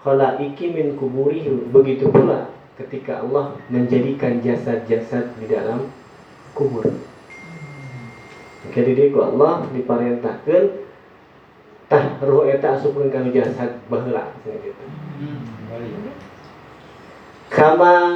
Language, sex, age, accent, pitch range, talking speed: Indonesian, male, 40-59, native, 130-170 Hz, 80 wpm